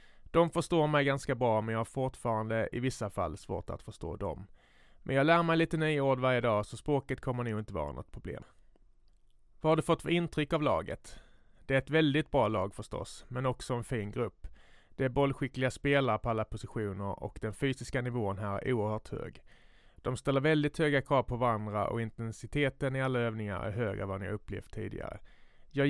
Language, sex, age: Swedish, male, 30-49